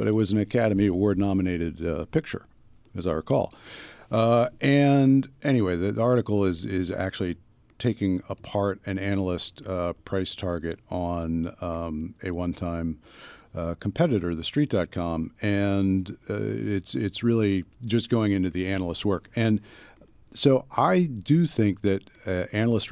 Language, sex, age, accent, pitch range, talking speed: English, male, 50-69, American, 90-110 Hz, 140 wpm